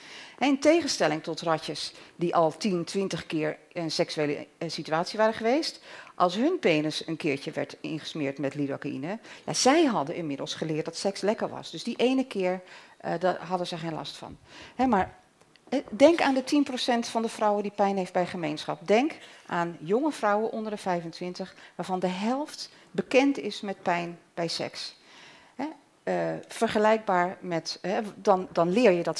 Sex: female